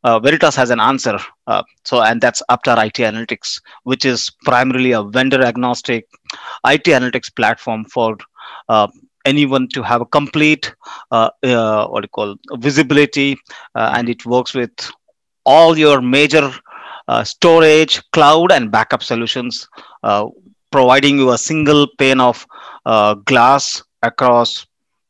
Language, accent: English, Indian